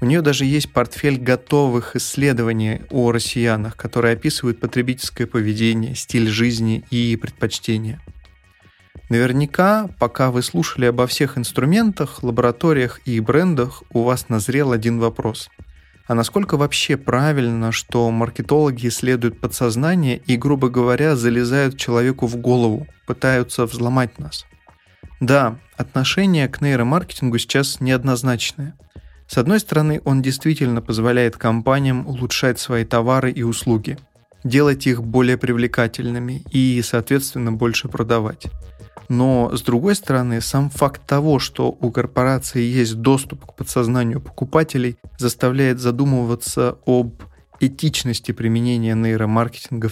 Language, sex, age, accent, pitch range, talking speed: Russian, male, 30-49, native, 115-135 Hz, 115 wpm